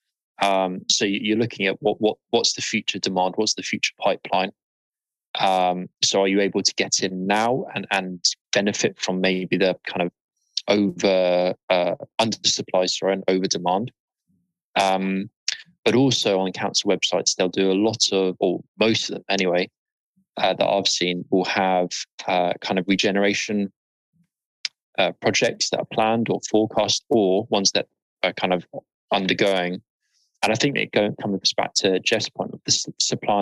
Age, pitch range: 20-39, 95-105 Hz